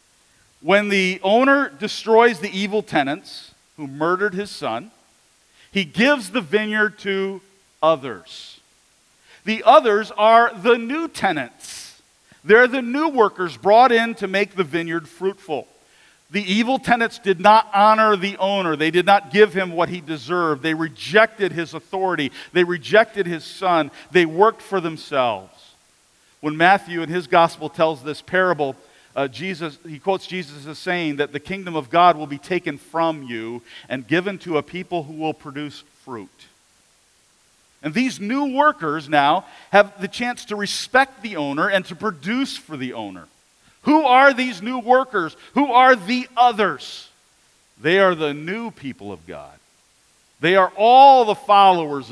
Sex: male